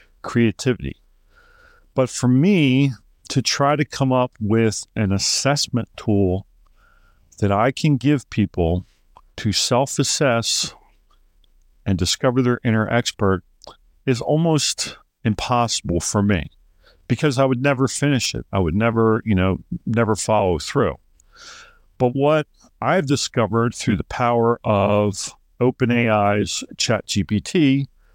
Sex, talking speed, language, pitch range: male, 115 wpm, English, 105-135 Hz